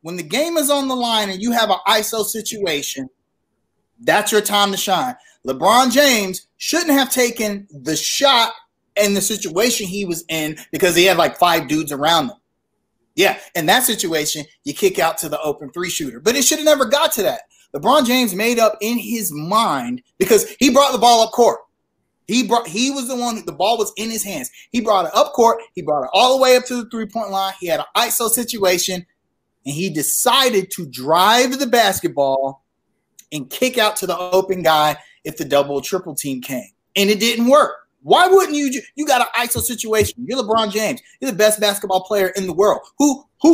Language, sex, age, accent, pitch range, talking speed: English, male, 30-49, American, 175-250 Hz, 210 wpm